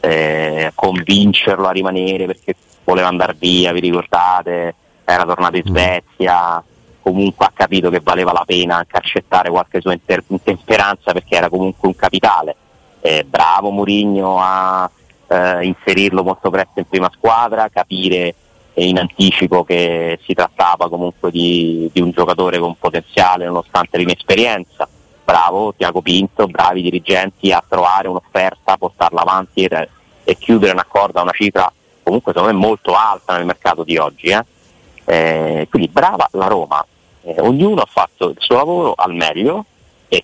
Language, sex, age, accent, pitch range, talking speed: Italian, male, 30-49, native, 85-95 Hz, 150 wpm